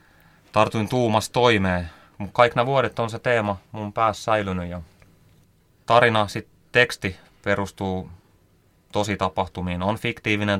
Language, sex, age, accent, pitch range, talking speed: Finnish, male, 30-49, native, 90-105 Hz, 120 wpm